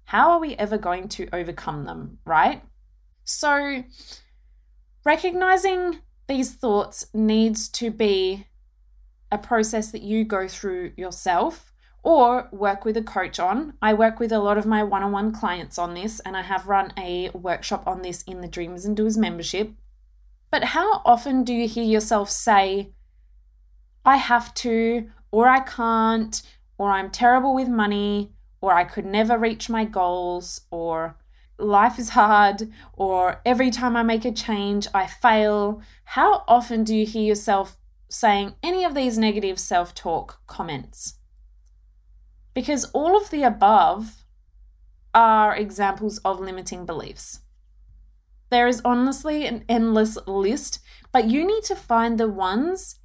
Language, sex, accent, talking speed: English, female, Australian, 145 wpm